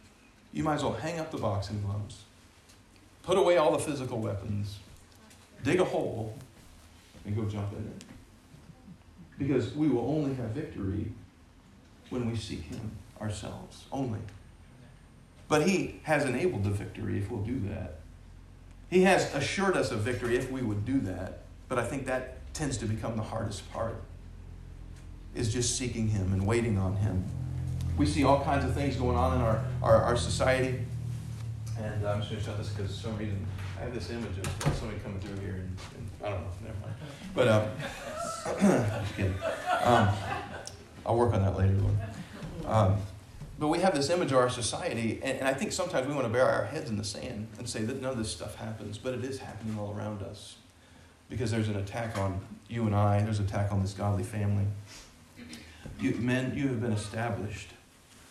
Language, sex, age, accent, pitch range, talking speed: English, male, 40-59, American, 100-120 Hz, 190 wpm